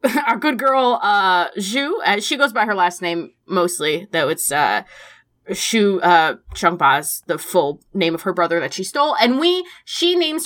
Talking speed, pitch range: 185 wpm, 190-275 Hz